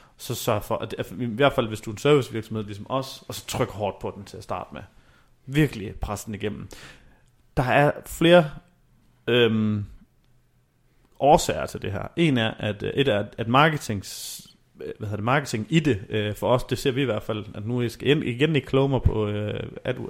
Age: 30-49